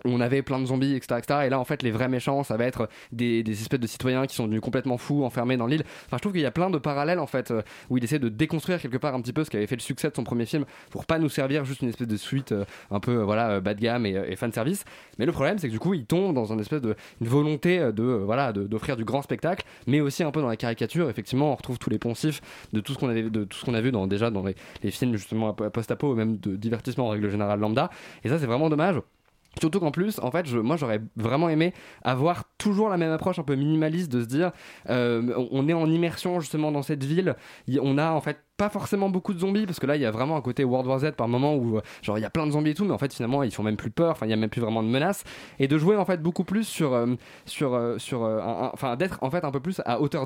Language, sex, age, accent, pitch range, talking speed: French, male, 20-39, French, 115-155 Hz, 295 wpm